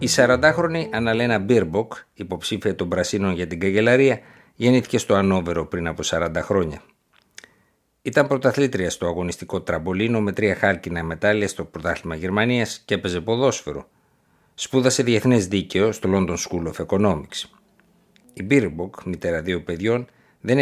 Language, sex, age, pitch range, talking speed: Greek, male, 50-69, 90-120 Hz, 135 wpm